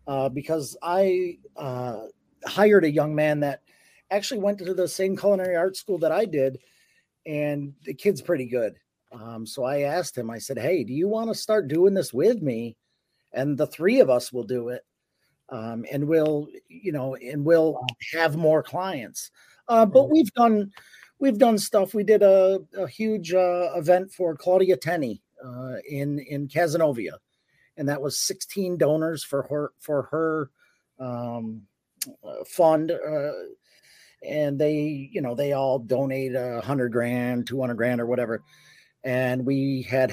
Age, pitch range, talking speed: 40-59, 130-175 Hz, 165 wpm